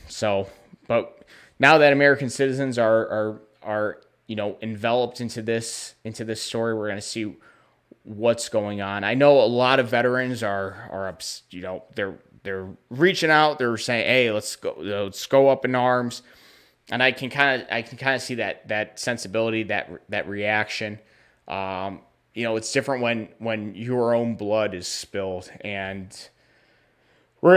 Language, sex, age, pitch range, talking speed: English, male, 20-39, 105-125 Hz, 170 wpm